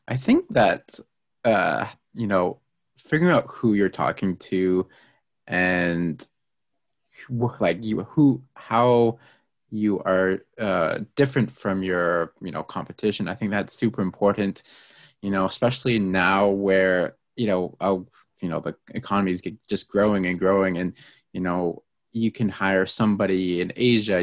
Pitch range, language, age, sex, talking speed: 90-115 Hz, English, 20-39, male, 145 wpm